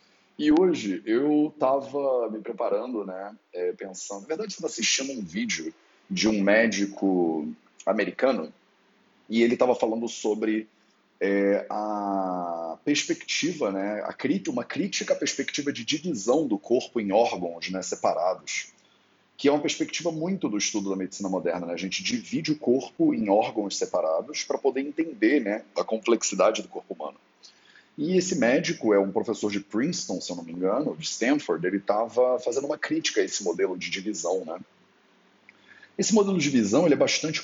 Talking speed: 165 wpm